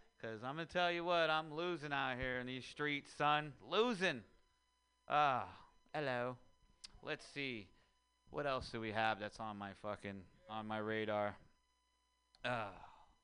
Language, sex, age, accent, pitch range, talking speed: English, male, 30-49, American, 115-150 Hz, 155 wpm